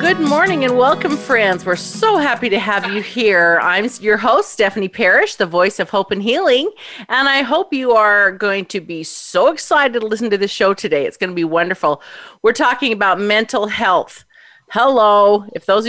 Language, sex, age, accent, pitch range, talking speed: English, female, 40-59, American, 180-235 Hz, 195 wpm